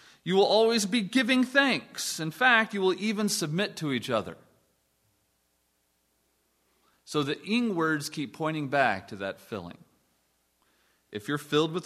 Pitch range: 105-170 Hz